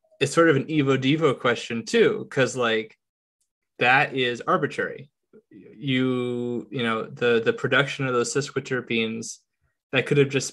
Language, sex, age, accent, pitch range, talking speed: English, male, 20-39, American, 115-135 Hz, 140 wpm